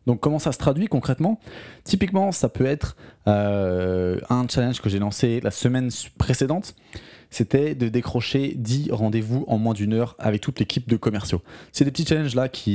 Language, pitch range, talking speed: French, 110-135 Hz, 185 wpm